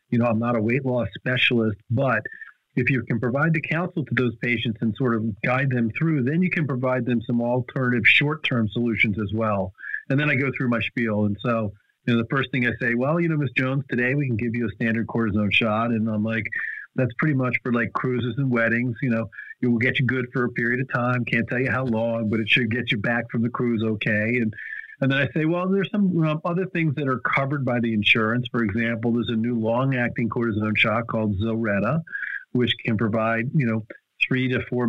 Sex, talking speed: male, 235 wpm